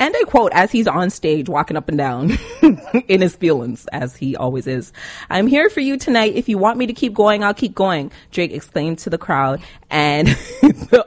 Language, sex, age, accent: English, female, 30-49, American